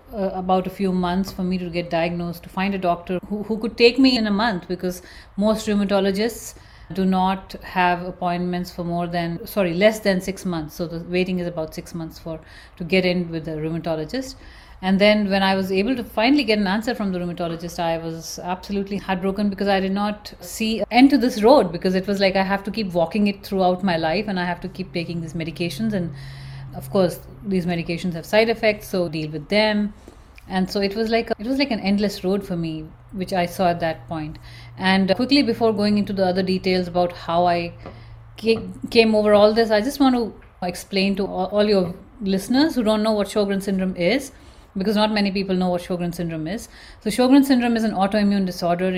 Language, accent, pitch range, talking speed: English, Indian, 175-210 Hz, 220 wpm